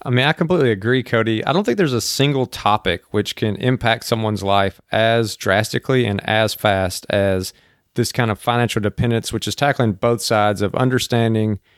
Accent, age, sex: American, 30-49, male